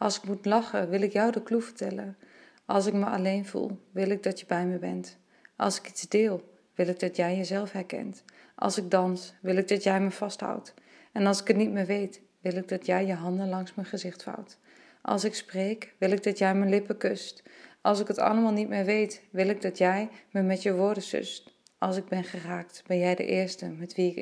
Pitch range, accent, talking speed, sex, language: 175-200 Hz, Dutch, 235 wpm, female, Dutch